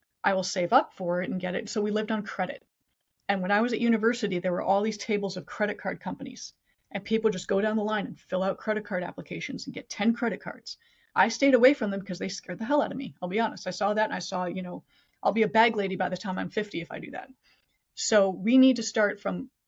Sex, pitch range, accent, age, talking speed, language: female, 200-265 Hz, American, 30-49, 280 wpm, English